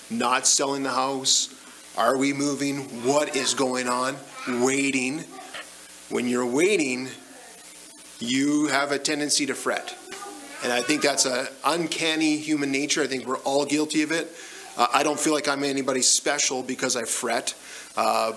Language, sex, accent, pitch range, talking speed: English, male, American, 125-150 Hz, 155 wpm